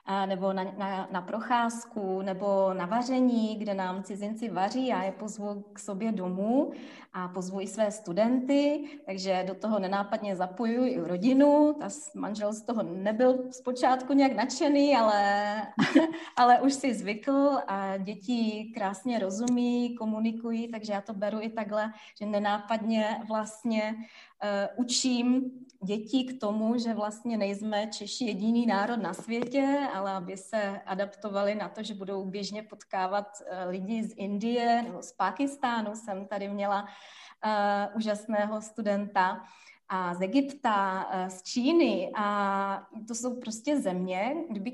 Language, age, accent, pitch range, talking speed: Czech, 20-39, native, 200-245 Hz, 135 wpm